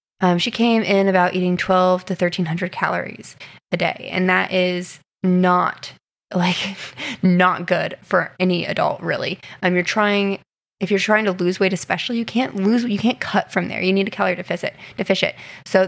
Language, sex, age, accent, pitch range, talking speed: English, female, 20-39, American, 180-210 Hz, 180 wpm